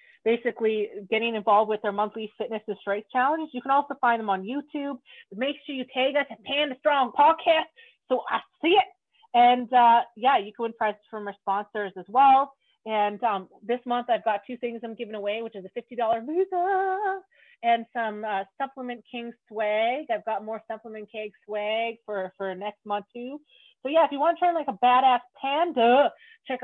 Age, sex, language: 30-49, female, English